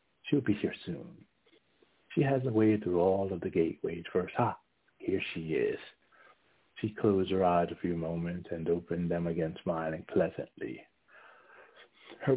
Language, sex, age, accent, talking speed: English, male, 60-79, American, 155 wpm